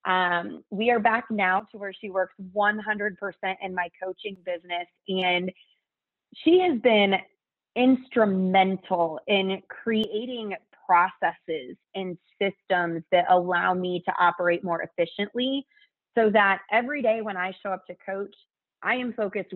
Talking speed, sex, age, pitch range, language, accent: 135 wpm, female, 30-49, 180-220 Hz, English, American